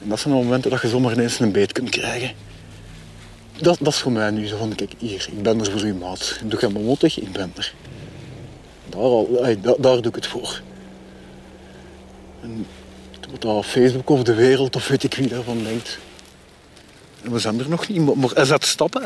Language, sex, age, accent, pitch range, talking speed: Dutch, male, 50-69, Dutch, 110-160 Hz, 215 wpm